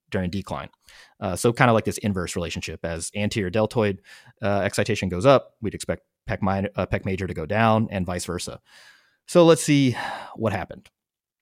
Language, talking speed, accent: English, 185 wpm, American